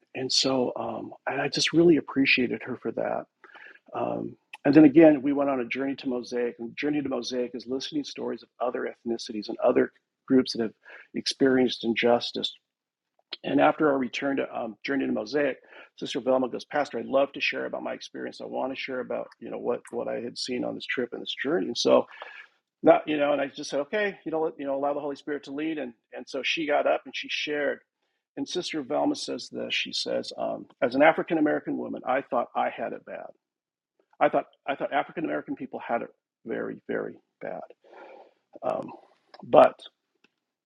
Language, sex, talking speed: English, male, 205 wpm